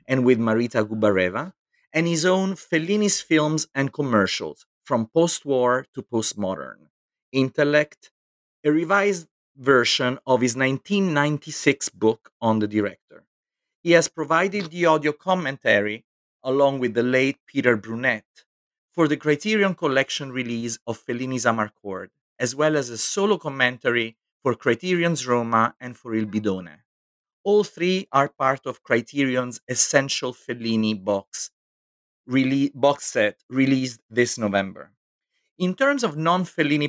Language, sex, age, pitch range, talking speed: English, male, 40-59, 115-155 Hz, 125 wpm